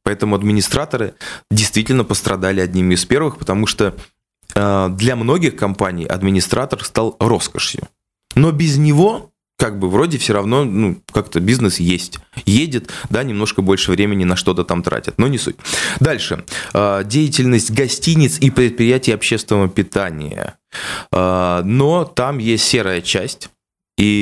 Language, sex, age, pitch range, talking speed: Russian, male, 20-39, 90-115 Hz, 130 wpm